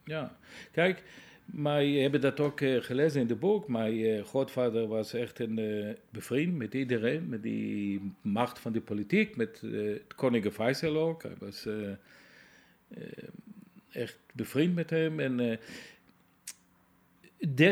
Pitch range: 115-160 Hz